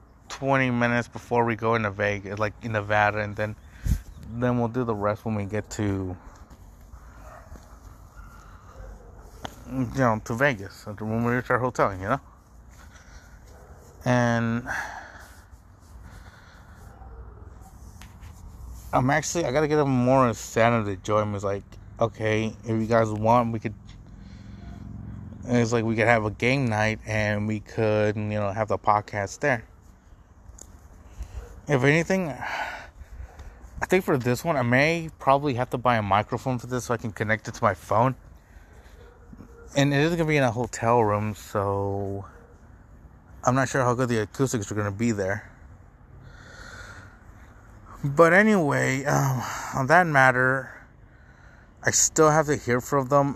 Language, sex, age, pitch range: English, male, 30-49, 95-125 Hz